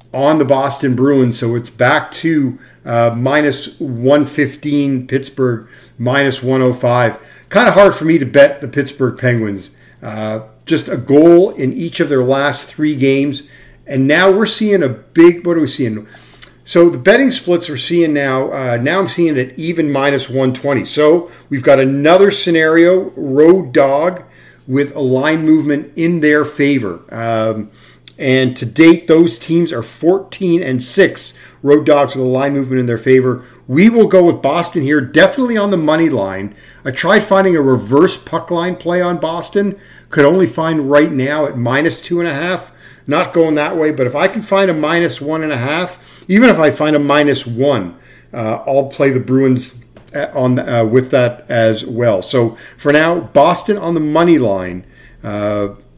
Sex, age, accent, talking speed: male, 50-69, American, 175 wpm